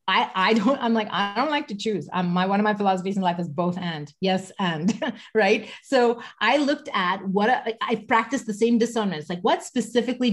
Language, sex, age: English, female, 30-49